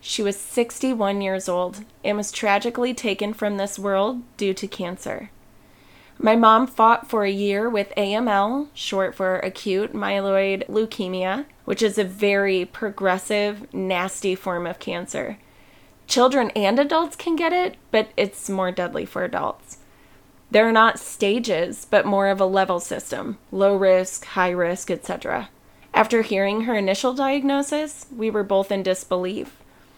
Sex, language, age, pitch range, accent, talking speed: female, English, 30-49, 195-240 Hz, American, 145 wpm